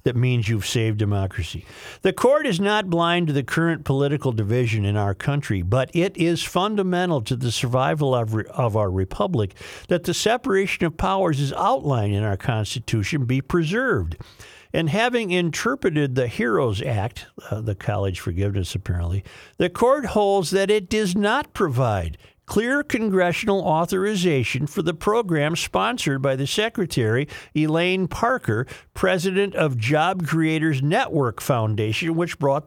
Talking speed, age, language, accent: 150 wpm, 50-69, English, American